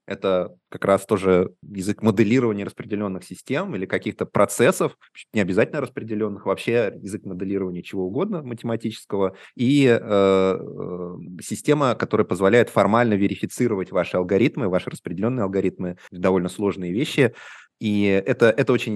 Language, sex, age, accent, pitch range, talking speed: Russian, male, 20-39, native, 95-115 Hz, 125 wpm